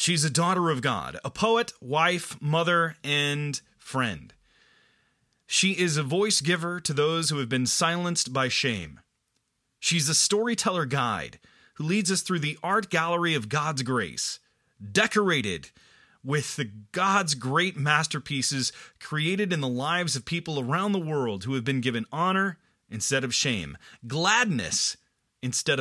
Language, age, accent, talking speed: English, 30-49, American, 145 wpm